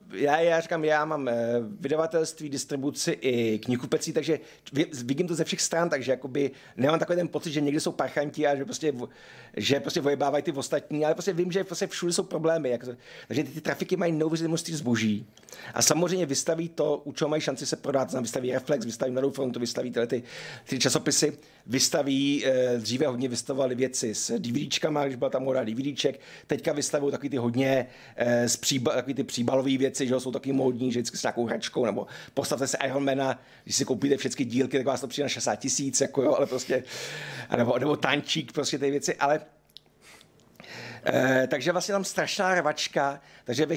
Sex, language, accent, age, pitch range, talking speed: male, Czech, native, 50-69, 130-155 Hz, 185 wpm